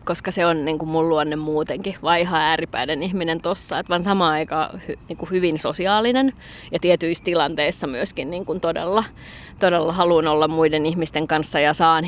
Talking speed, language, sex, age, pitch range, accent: 165 wpm, Finnish, female, 20-39, 160-185 Hz, native